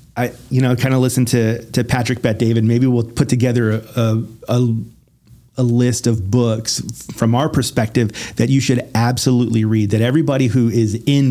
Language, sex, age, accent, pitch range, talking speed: English, male, 40-59, American, 110-125 Hz, 175 wpm